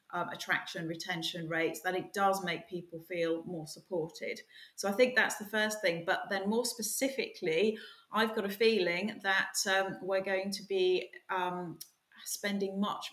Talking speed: 165 wpm